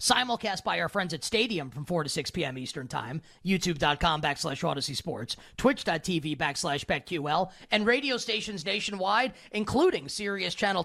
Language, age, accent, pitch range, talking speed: English, 30-49, American, 155-215 Hz, 140 wpm